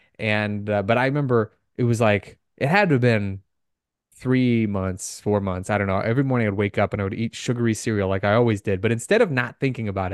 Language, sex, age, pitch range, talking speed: English, male, 20-39, 105-130 Hz, 245 wpm